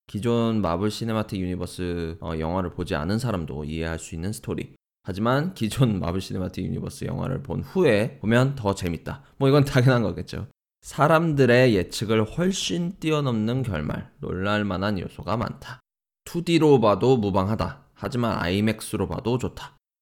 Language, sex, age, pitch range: Korean, male, 20-39, 90-125 Hz